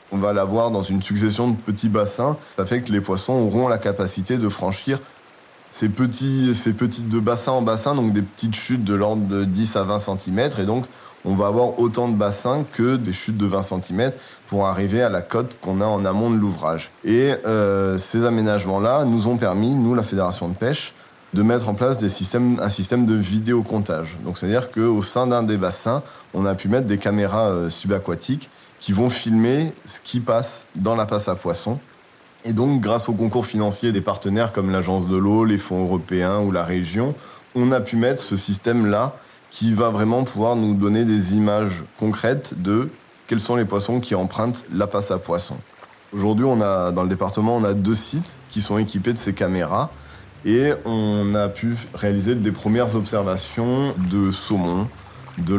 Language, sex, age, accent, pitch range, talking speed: French, male, 20-39, French, 100-120 Hz, 200 wpm